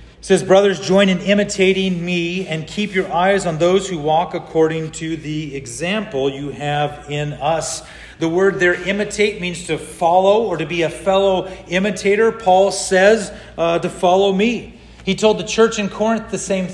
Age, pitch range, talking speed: 40-59, 155-200 Hz, 175 wpm